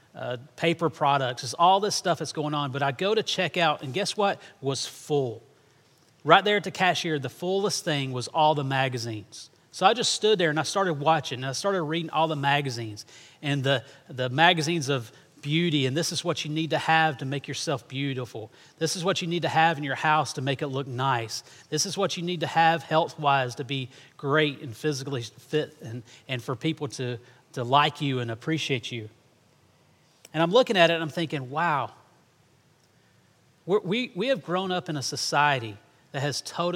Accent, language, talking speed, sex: American, English, 210 wpm, male